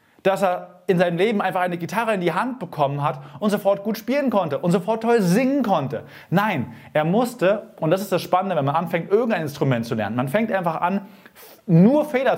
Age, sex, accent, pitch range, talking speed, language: 30-49, male, German, 150-210 Hz, 215 wpm, German